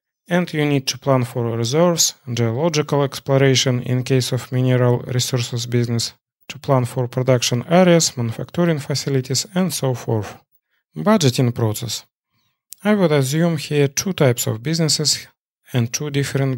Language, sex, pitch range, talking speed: English, male, 120-150 Hz, 140 wpm